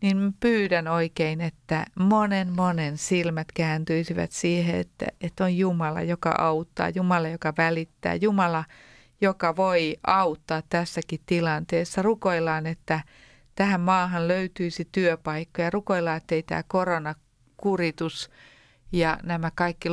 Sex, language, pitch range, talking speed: female, Finnish, 160-185 Hz, 115 wpm